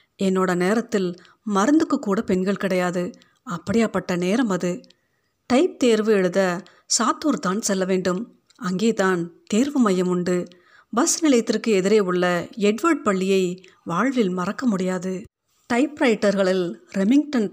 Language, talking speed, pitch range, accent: Tamil, 105 wpm, 180-245 Hz, native